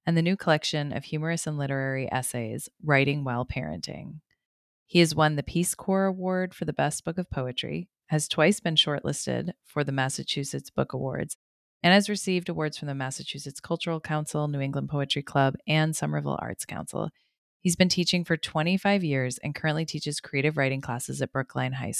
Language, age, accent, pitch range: English, 30-49, American, 140-165 Hz